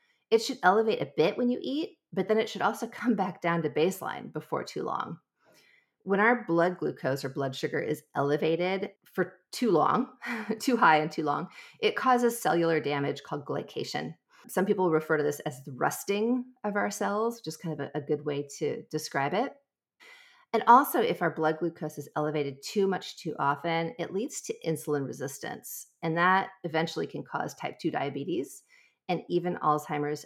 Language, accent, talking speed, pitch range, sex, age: English, American, 185 wpm, 145-205 Hz, female, 40-59